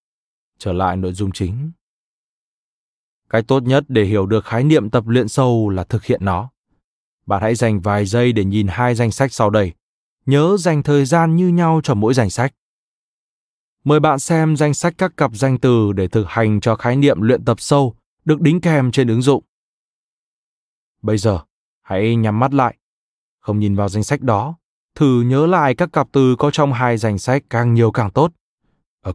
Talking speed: 195 wpm